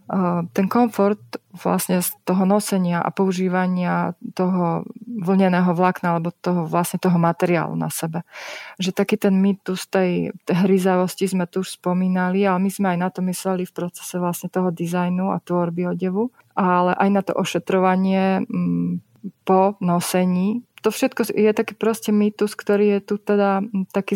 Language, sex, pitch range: Slovak, female, 180-195 Hz